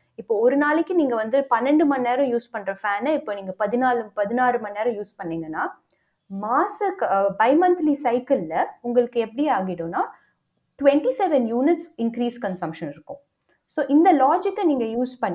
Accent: native